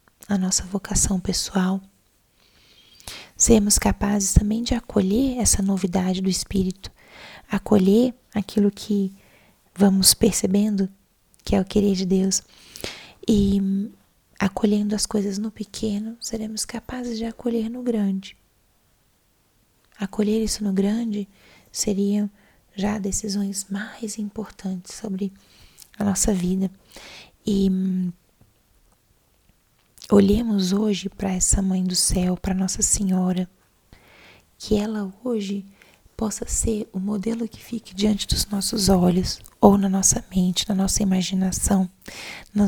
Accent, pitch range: Brazilian, 190-215 Hz